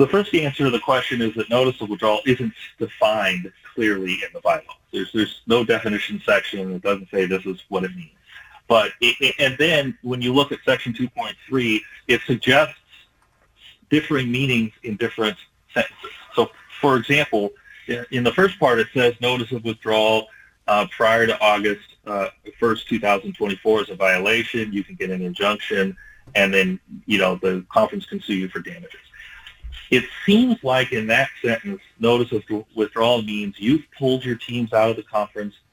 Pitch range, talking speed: 105-130 Hz, 175 wpm